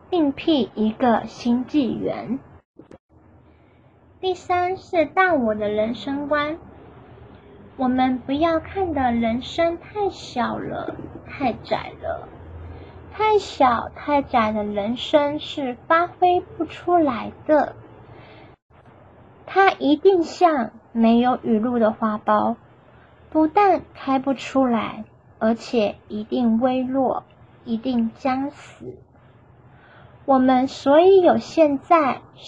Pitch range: 235-335 Hz